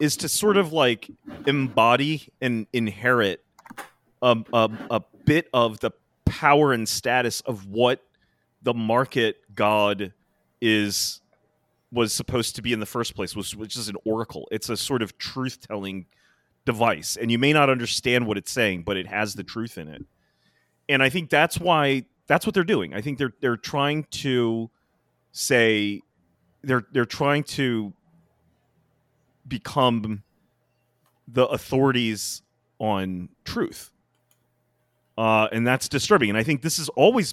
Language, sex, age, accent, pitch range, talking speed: English, male, 30-49, American, 105-135 Hz, 150 wpm